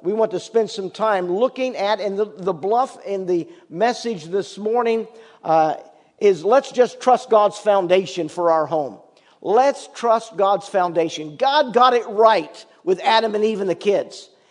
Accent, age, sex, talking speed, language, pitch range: American, 50-69, male, 175 wpm, English, 170-230 Hz